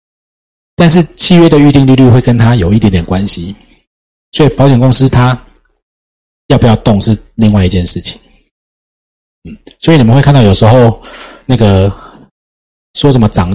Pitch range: 90-130 Hz